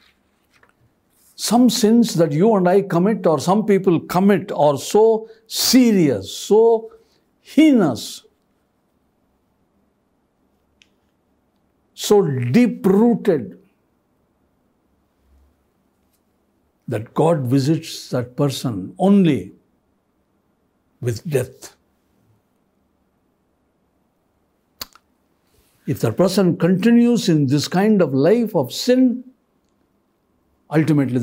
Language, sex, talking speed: Kannada, male, 75 wpm